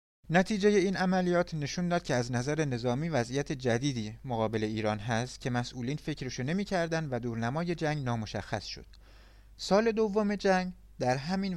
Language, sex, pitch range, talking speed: Persian, male, 120-170 Hz, 145 wpm